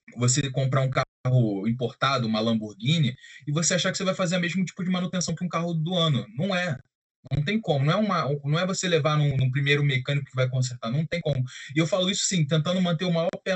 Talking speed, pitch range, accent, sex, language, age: 240 wpm, 130-185 Hz, Brazilian, male, Portuguese, 20-39